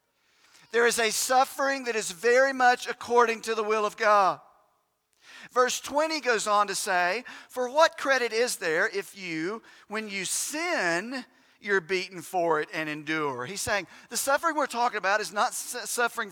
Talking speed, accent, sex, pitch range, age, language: 170 wpm, American, male, 185-240 Hz, 50-69, English